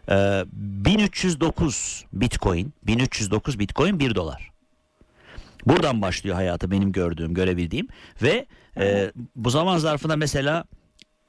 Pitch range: 100-150 Hz